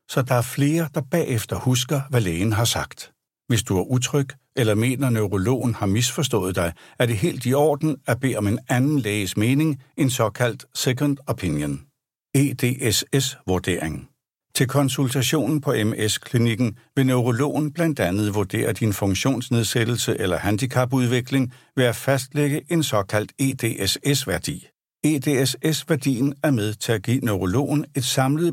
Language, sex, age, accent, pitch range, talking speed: Danish, male, 60-79, native, 110-145 Hz, 140 wpm